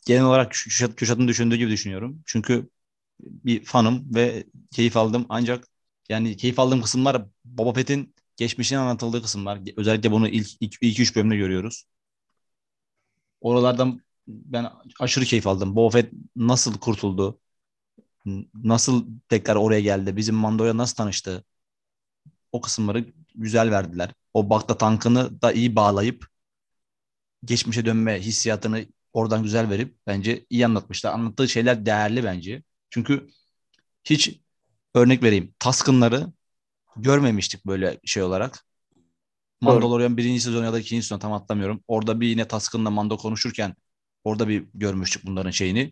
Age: 30-49